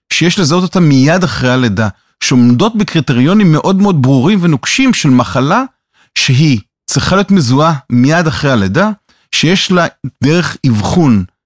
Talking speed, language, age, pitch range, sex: 130 wpm, Hebrew, 40-59, 125-175 Hz, male